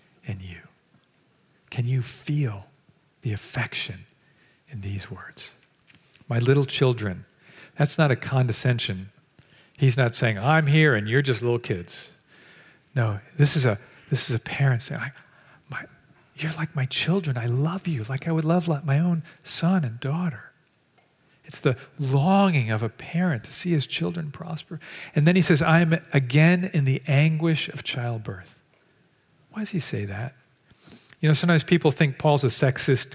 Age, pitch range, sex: 50-69, 125-155 Hz, male